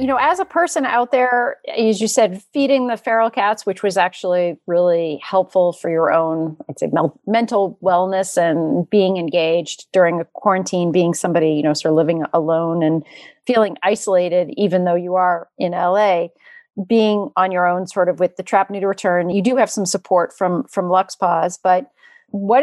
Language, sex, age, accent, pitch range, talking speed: English, female, 40-59, American, 175-220 Hz, 195 wpm